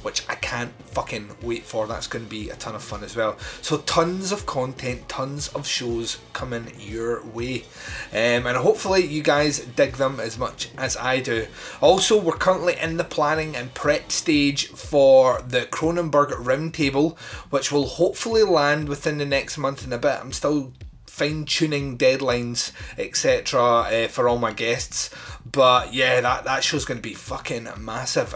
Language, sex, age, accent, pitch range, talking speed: English, male, 30-49, British, 120-150 Hz, 170 wpm